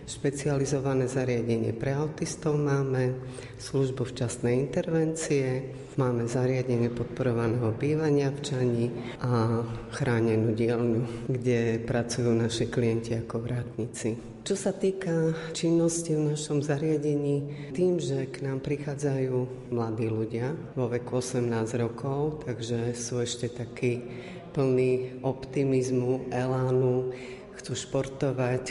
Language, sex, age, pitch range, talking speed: Slovak, female, 30-49, 120-145 Hz, 105 wpm